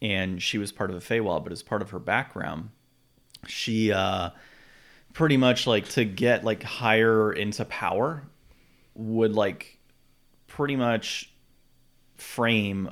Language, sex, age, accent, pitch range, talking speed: English, male, 30-49, American, 95-110 Hz, 135 wpm